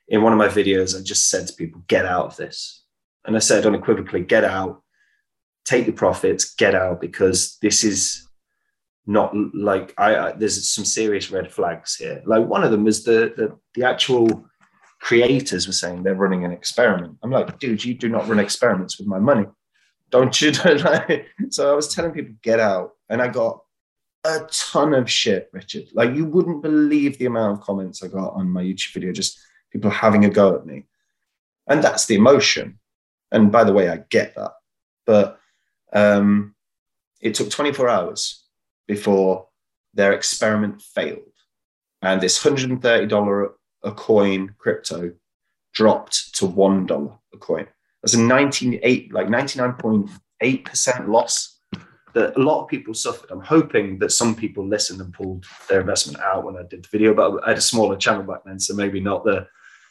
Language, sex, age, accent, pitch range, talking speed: English, male, 20-39, British, 95-120 Hz, 175 wpm